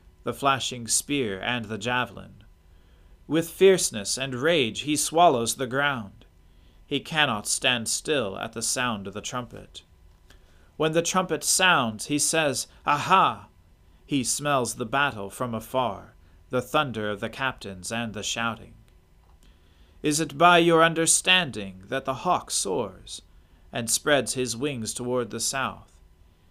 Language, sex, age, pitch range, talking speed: English, male, 40-59, 90-135 Hz, 140 wpm